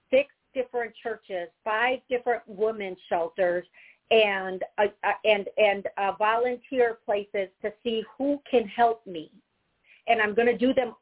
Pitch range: 205-245 Hz